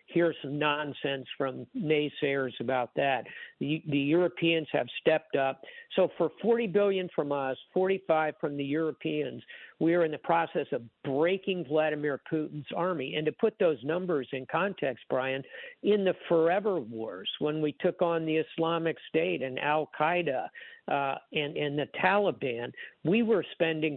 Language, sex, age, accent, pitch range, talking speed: English, male, 60-79, American, 145-175 Hz, 160 wpm